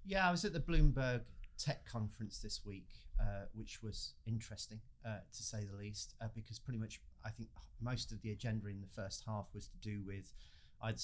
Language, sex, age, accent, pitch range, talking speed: English, male, 40-59, British, 100-115 Hz, 205 wpm